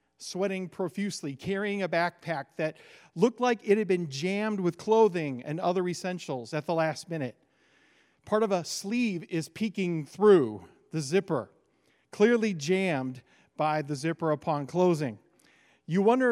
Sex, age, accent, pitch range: male, 40-59, American, 165-215 Hz